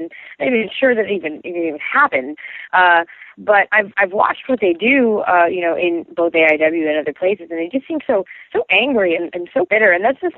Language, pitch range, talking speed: English, 160-240 Hz, 250 wpm